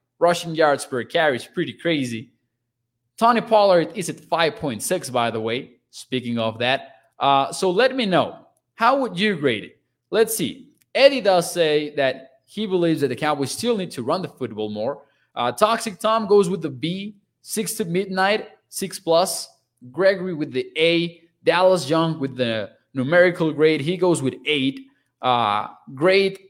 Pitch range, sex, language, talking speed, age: 135-185 Hz, male, English, 170 wpm, 20-39